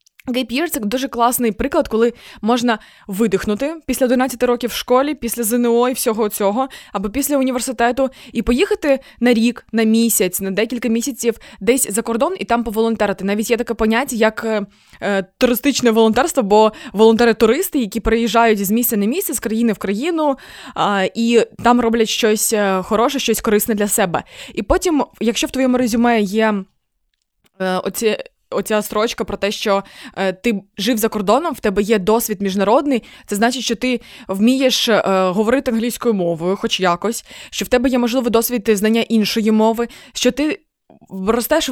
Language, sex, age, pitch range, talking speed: Ukrainian, female, 20-39, 215-255 Hz, 165 wpm